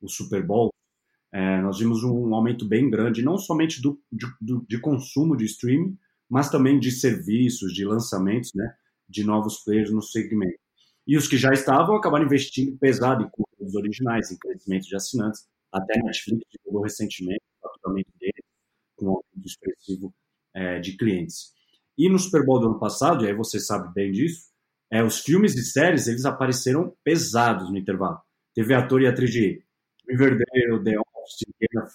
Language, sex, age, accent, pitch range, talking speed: Portuguese, male, 30-49, Brazilian, 105-135 Hz, 170 wpm